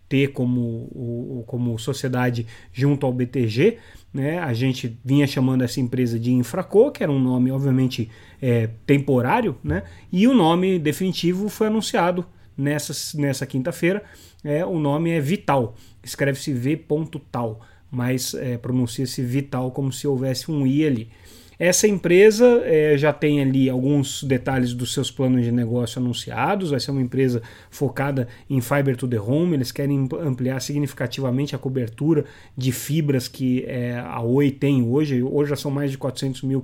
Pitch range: 125-145 Hz